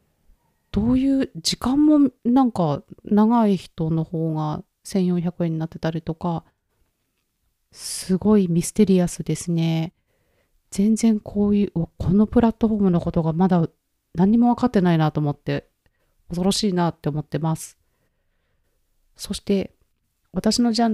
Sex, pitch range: female, 160-205 Hz